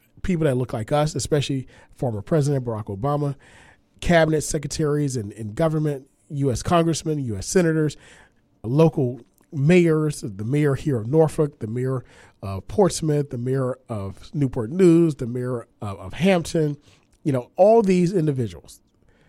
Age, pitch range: 40-59, 115-160 Hz